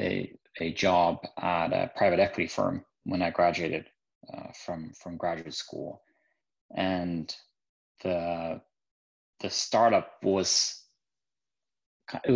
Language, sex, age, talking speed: English, male, 20-39, 105 wpm